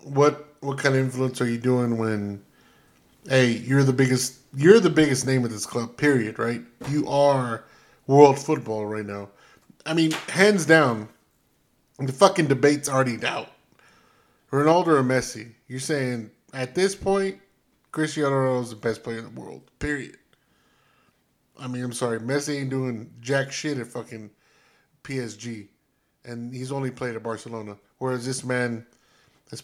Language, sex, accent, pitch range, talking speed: English, male, American, 120-145 Hz, 155 wpm